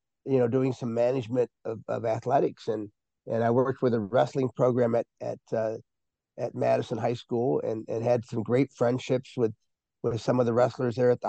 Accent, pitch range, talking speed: American, 115-140 Hz, 200 wpm